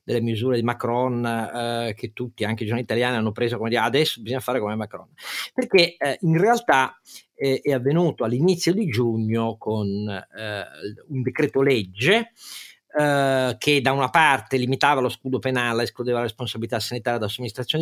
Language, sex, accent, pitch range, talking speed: Italian, male, native, 115-150 Hz, 170 wpm